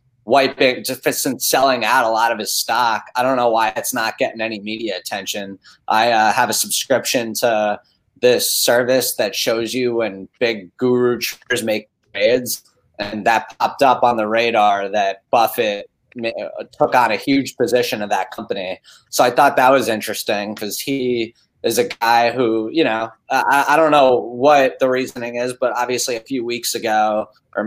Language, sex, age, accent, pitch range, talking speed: English, male, 20-39, American, 110-130 Hz, 180 wpm